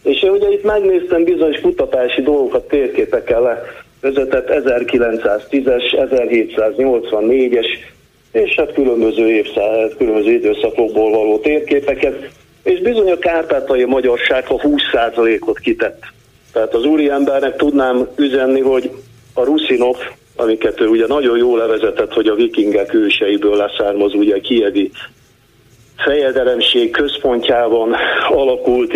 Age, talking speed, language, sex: 50-69, 110 wpm, Hungarian, male